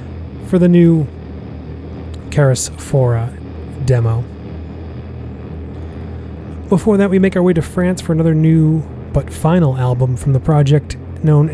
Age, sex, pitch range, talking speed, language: 30-49, male, 90-140 Hz, 125 wpm, English